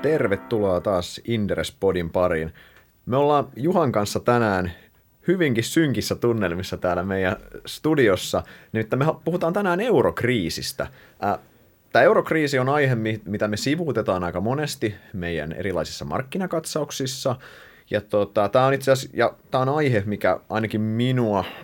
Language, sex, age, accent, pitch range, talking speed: Finnish, male, 30-49, native, 95-135 Hz, 115 wpm